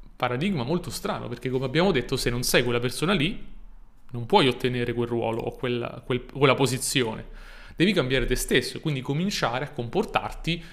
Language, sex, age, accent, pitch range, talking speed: Italian, male, 30-49, native, 125-150 Hz, 180 wpm